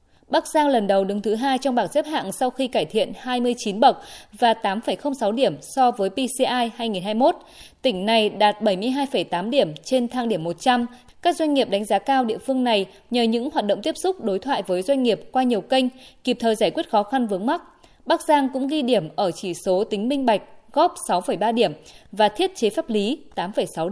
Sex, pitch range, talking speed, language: female, 210-275 Hz, 210 wpm, Vietnamese